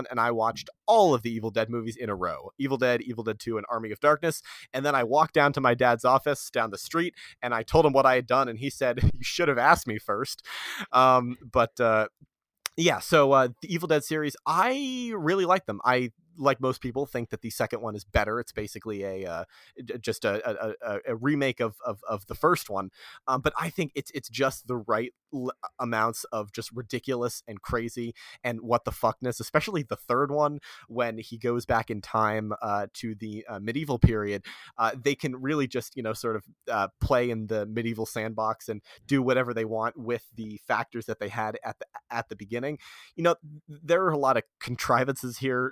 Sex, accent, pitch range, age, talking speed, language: male, American, 110-135 Hz, 30-49, 220 wpm, English